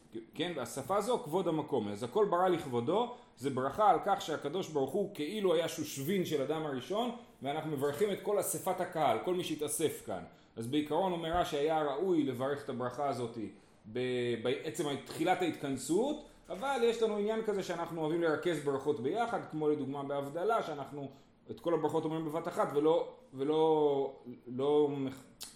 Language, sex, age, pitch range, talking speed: Hebrew, male, 30-49, 130-175 Hz, 160 wpm